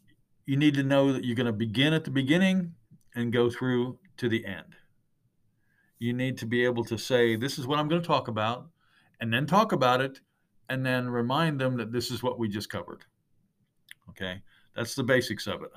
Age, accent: 50-69, American